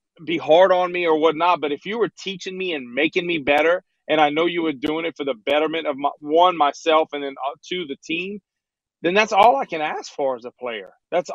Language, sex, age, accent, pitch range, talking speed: English, male, 30-49, American, 145-185 Hz, 255 wpm